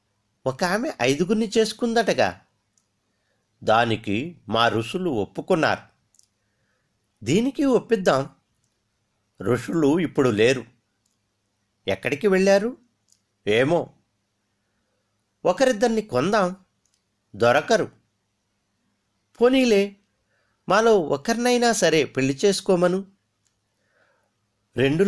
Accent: native